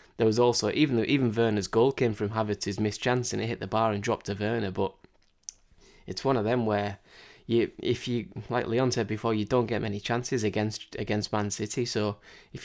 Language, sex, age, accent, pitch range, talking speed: English, male, 10-29, British, 100-115 Hz, 215 wpm